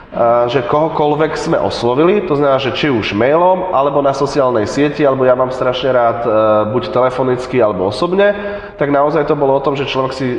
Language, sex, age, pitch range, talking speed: Slovak, male, 20-39, 120-140 Hz, 185 wpm